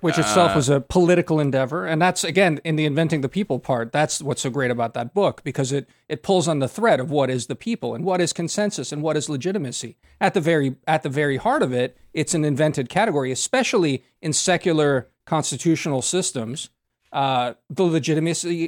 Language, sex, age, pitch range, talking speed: English, male, 40-59, 135-175 Hz, 205 wpm